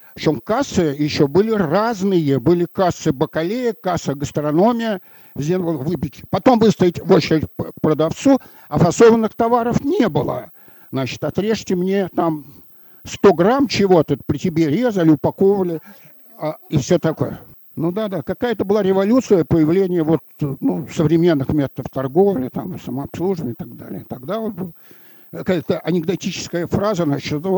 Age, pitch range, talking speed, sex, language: 60-79, 145-190 Hz, 130 wpm, male, Russian